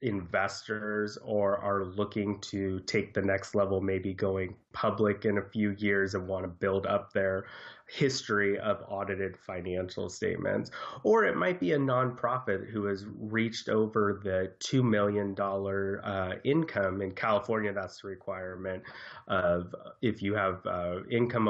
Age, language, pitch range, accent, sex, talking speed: 30-49, English, 95-105 Hz, American, male, 145 wpm